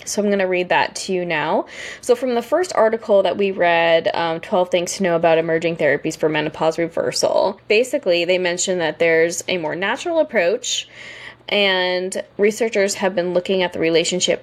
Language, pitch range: English, 165-205 Hz